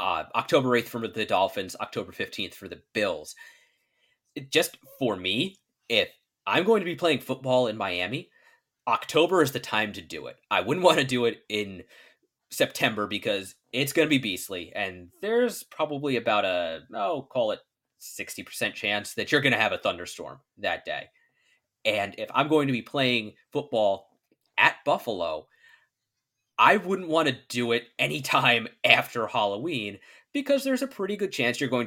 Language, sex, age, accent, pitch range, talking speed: English, male, 30-49, American, 115-185 Hz, 170 wpm